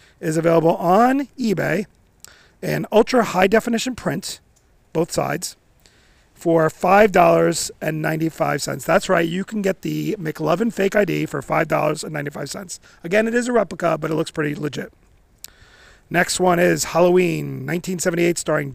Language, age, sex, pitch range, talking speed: English, 40-59, male, 155-185 Hz, 125 wpm